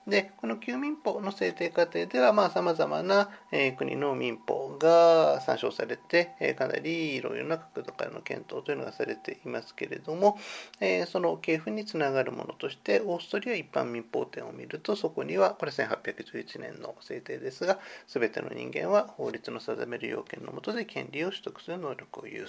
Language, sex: Japanese, male